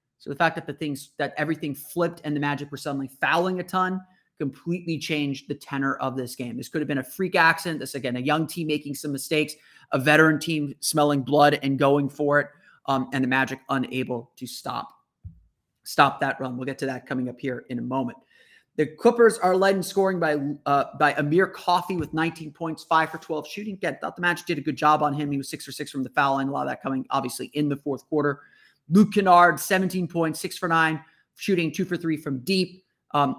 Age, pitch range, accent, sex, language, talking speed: 30-49, 135-165 Hz, American, male, English, 235 wpm